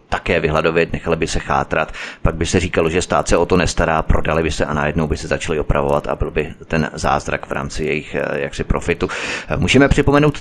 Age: 30-49